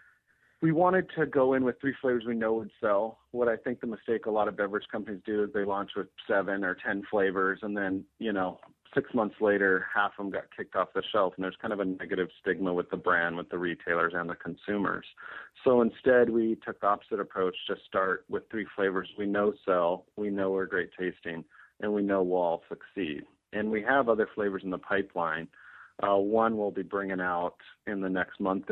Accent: American